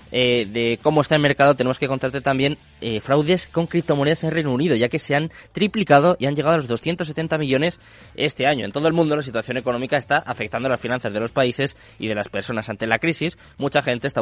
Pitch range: 115-145 Hz